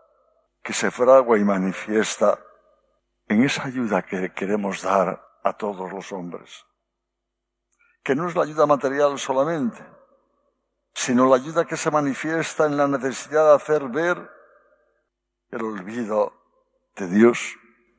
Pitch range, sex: 105-165 Hz, male